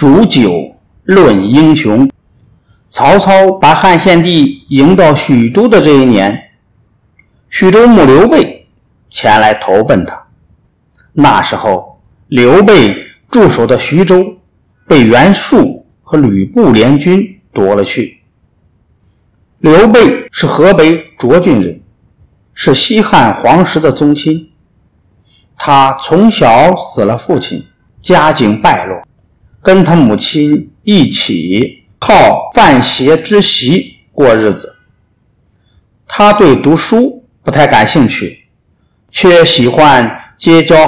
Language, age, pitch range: Chinese, 50-69, 135-205 Hz